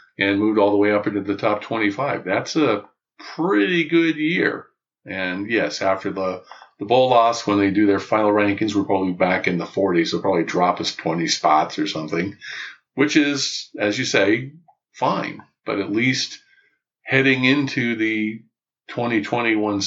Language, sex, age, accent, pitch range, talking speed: English, male, 50-69, American, 100-130 Hz, 165 wpm